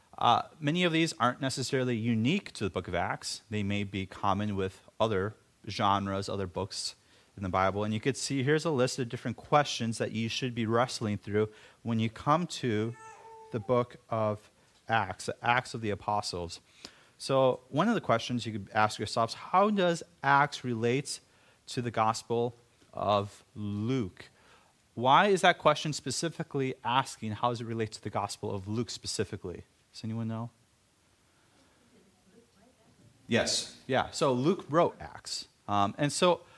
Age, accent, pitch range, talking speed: 30-49, American, 105-130 Hz, 165 wpm